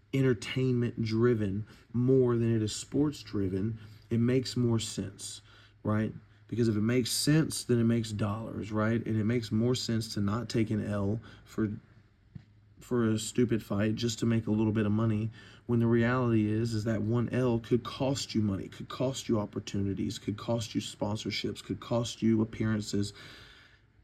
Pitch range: 105-120 Hz